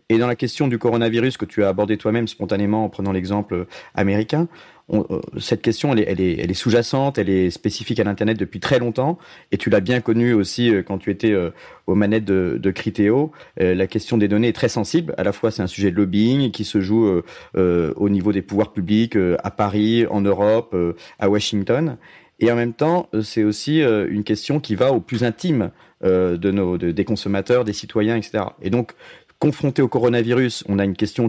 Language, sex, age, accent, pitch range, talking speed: French, male, 40-59, French, 100-120 Hz, 200 wpm